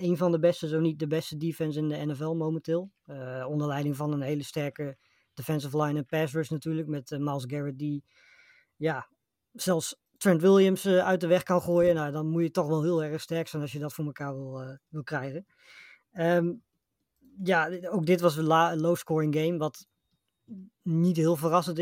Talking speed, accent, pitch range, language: 185 wpm, Dutch, 150-170 Hz, Dutch